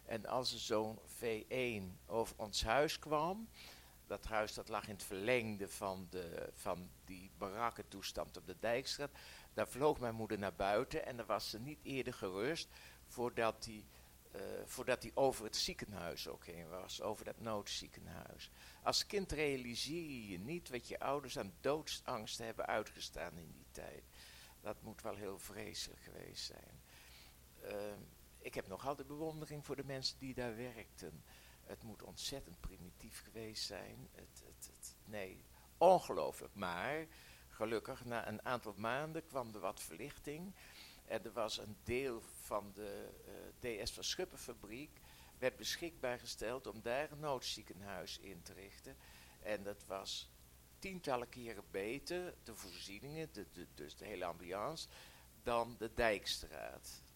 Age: 50-69